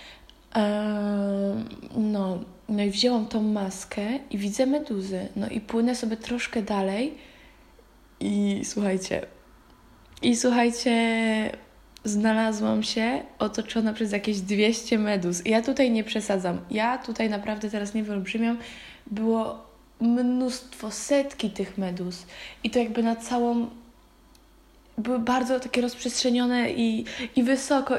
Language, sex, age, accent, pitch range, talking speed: Polish, female, 20-39, native, 205-245 Hz, 115 wpm